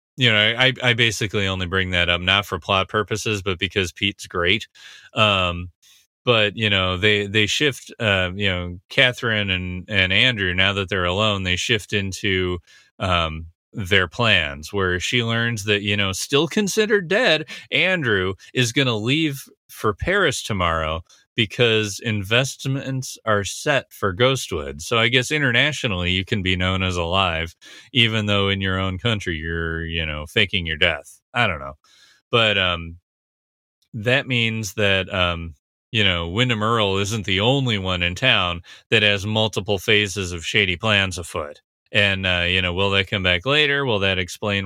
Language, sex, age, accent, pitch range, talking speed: English, male, 30-49, American, 90-120 Hz, 170 wpm